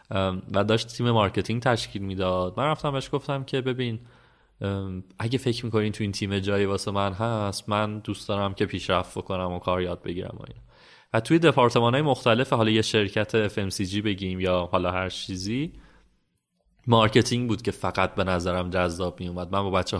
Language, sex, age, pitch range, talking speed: Persian, male, 30-49, 95-120 Hz, 175 wpm